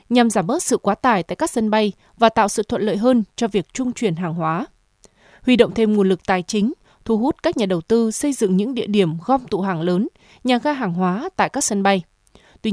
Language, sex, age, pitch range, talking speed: Vietnamese, female, 20-39, 195-240 Hz, 250 wpm